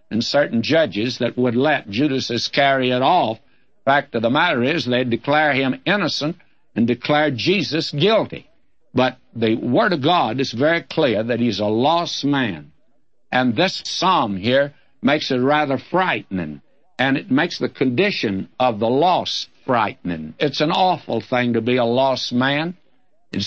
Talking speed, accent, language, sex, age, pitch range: 160 wpm, American, English, male, 60-79, 115-150 Hz